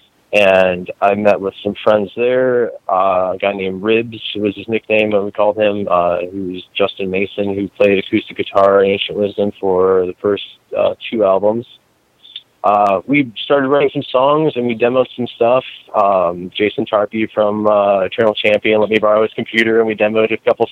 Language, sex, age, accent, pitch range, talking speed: English, male, 20-39, American, 95-115 Hz, 190 wpm